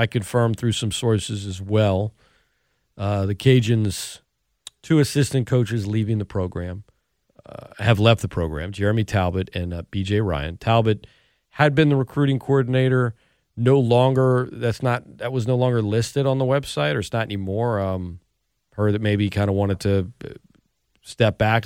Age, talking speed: 40-59, 165 wpm